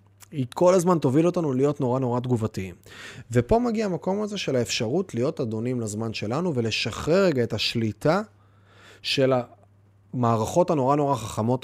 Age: 30-49